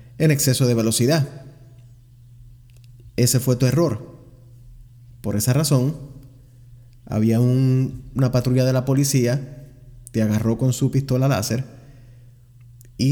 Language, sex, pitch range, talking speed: English, male, 120-135 Hz, 110 wpm